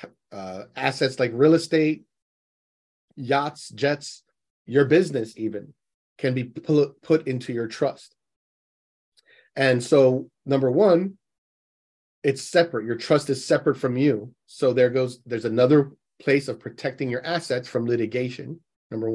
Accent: American